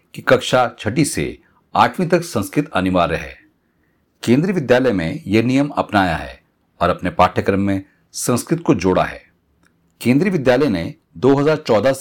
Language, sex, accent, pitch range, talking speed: Hindi, male, native, 85-140 Hz, 140 wpm